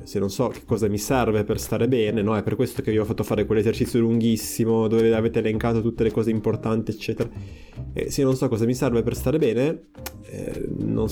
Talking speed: 220 wpm